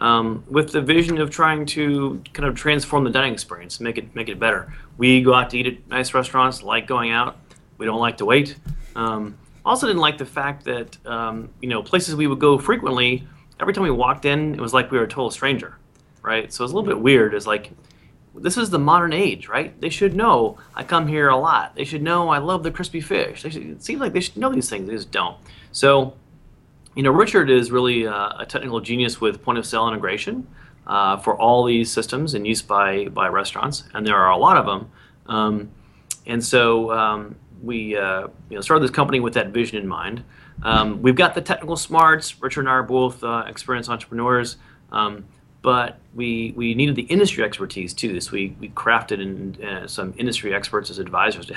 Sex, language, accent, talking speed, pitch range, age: male, English, American, 220 wpm, 110-145 Hz, 30-49